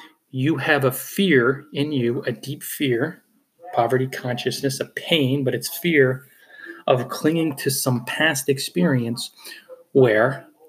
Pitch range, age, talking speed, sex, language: 120-155 Hz, 30-49, 130 wpm, male, English